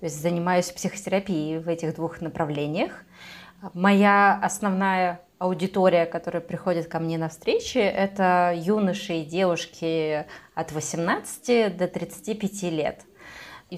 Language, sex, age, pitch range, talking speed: Russian, female, 20-39, 165-195 Hz, 120 wpm